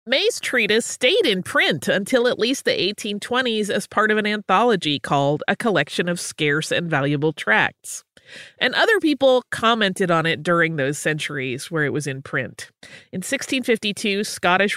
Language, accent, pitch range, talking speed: English, American, 160-215 Hz, 165 wpm